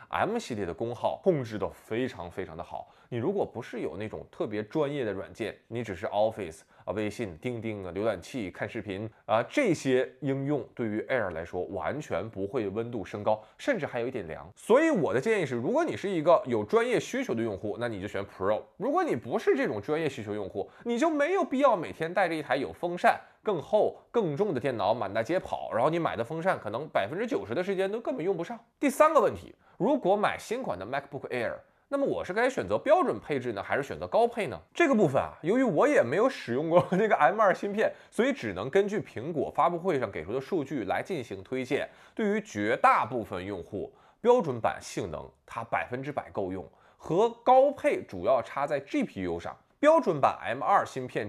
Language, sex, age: Chinese, male, 20-39